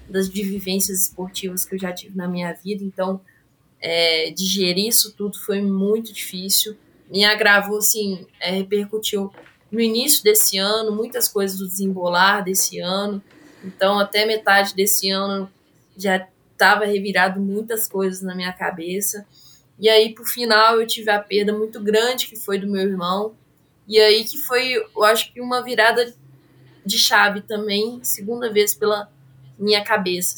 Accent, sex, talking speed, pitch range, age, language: Brazilian, female, 155 wpm, 190-220 Hz, 10-29, Portuguese